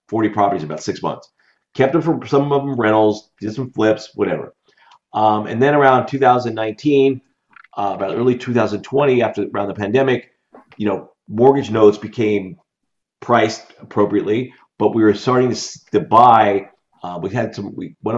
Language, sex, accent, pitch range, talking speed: English, male, American, 100-125 Hz, 165 wpm